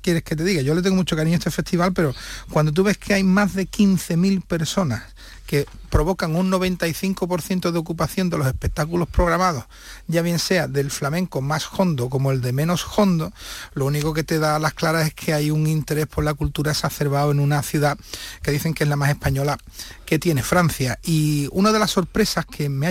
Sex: male